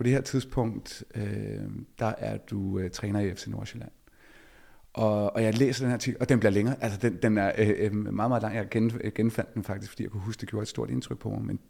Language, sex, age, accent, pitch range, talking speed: Danish, male, 30-49, native, 105-120 Hz, 230 wpm